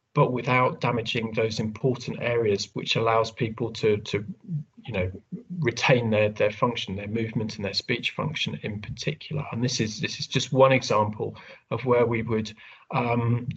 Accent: British